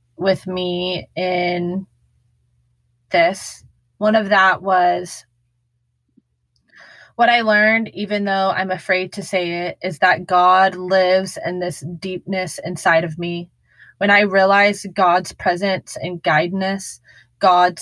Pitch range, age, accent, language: 160-200 Hz, 20-39, American, English